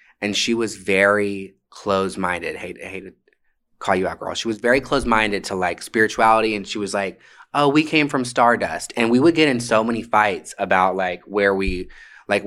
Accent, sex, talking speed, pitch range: American, male, 200 wpm, 95-115 Hz